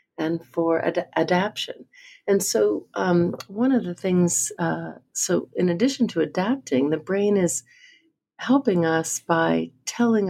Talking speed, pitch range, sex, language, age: 140 wpm, 155-205 Hz, female, English, 50-69